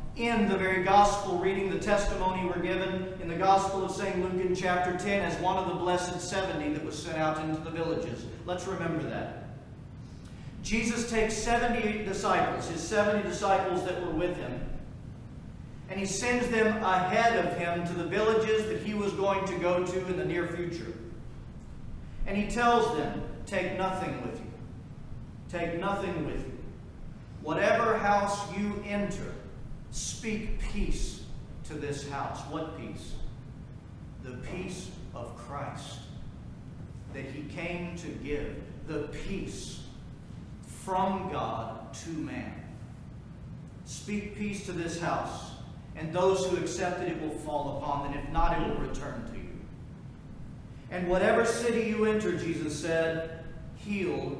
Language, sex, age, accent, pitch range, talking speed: English, male, 40-59, American, 155-200 Hz, 150 wpm